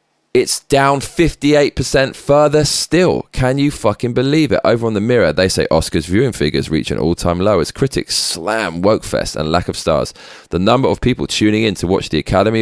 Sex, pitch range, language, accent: male, 90-130 Hz, English, British